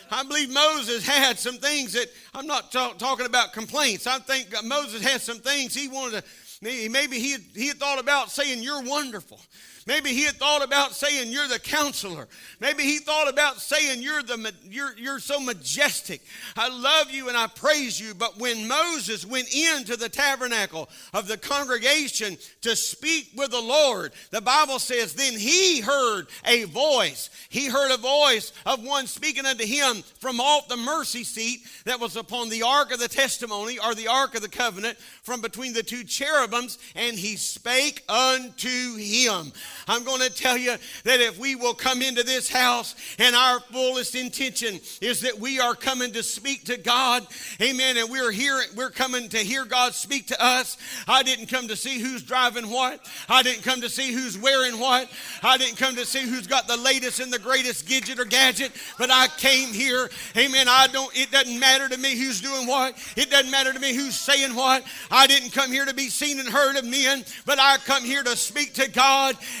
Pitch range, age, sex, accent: 240-275 Hz, 50-69, male, American